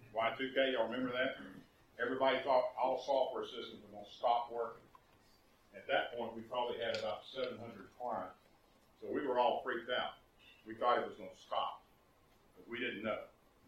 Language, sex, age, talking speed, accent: English, male, 50-69, 175 wpm, American